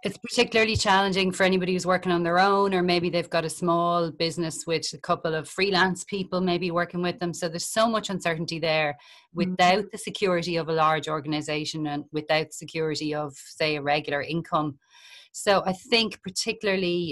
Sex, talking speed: female, 180 wpm